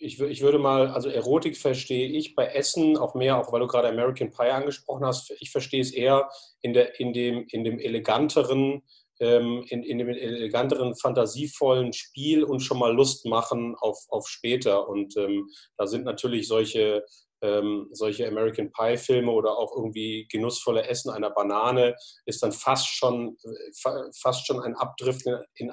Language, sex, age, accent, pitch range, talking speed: German, male, 40-59, German, 110-135 Hz, 170 wpm